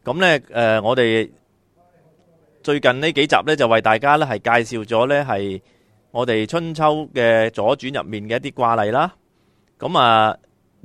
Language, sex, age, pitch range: Chinese, male, 30-49, 110-150 Hz